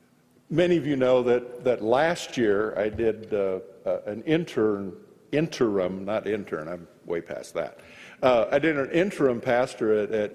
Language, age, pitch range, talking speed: English, 50-69, 110-145 Hz, 160 wpm